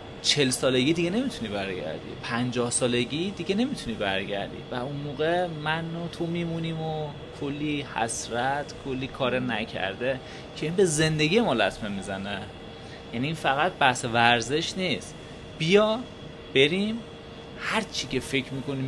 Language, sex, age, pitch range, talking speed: Persian, male, 30-49, 130-170 Hz, 130 wpm